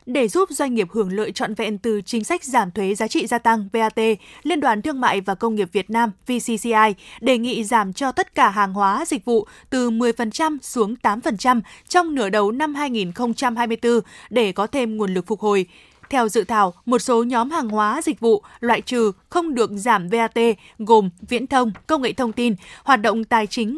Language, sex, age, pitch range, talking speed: Vietnamese, female, 20-39, 215-260 Hz, 205 wpm